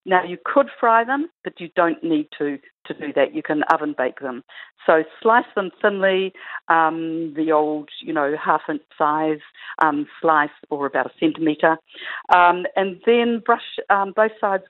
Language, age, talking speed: English, 50-69, 170 wpm